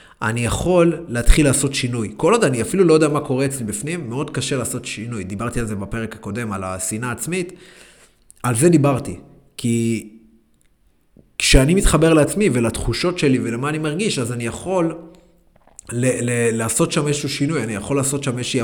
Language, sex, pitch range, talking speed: Hebrew, male, 115-145 Hz, 170 wpm